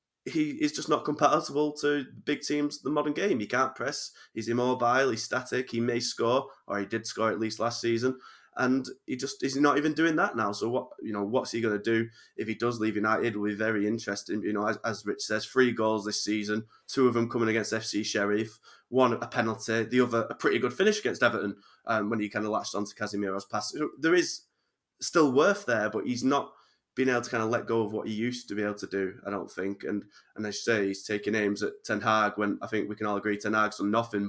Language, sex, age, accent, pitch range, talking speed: English, male, 20-39, British, 105-125 Hz, 250 wpm